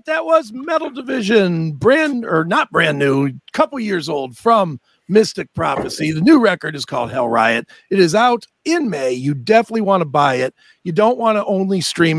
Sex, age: male, 50-69